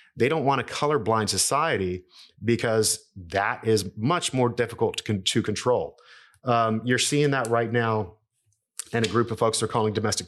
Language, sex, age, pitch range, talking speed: English, male, 30-49, 105-120 Hz, 175 wpm